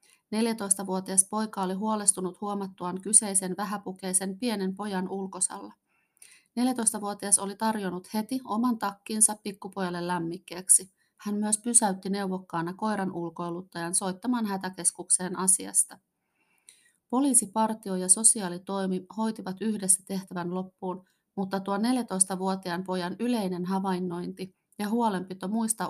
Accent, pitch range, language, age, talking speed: native, 185-215 Hz, Finnish, 30-49, 100 wpm